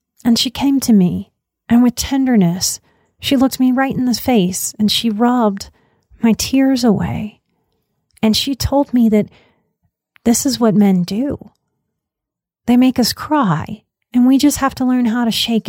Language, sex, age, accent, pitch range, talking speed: English, female, 30-49, American, 195-245 Hz, 170 wpm